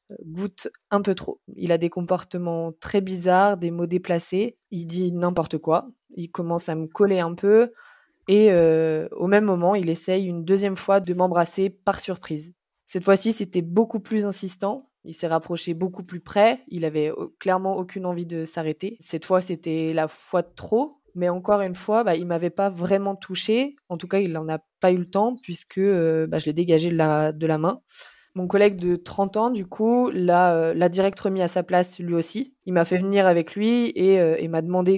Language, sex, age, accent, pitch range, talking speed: French, female, 20-39, French, 170-200 Hz, 210 wpm